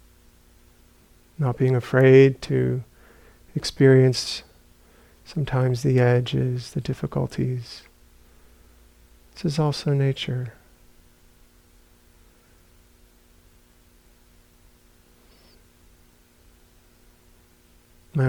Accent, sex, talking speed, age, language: American, male, 50 wpm, 40-59, English